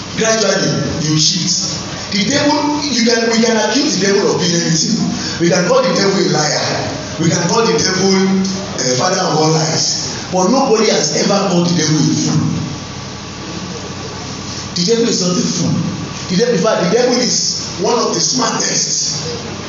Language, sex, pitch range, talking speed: English, male, 160-225 Hz, 160 wpm